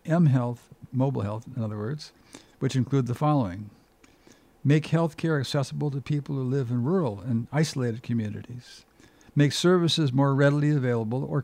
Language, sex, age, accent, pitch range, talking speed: English, male, 60-79, American, 120-150 Hz, 145 wpm